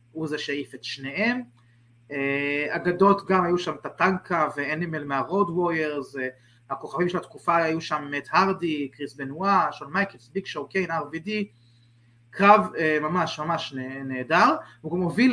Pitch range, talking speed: 130-175 Hz, 145 wpm